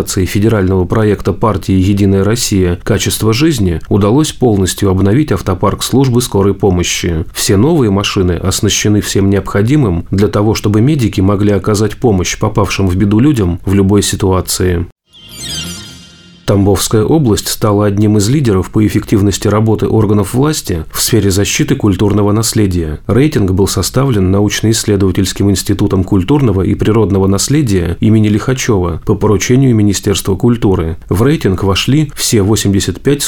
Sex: male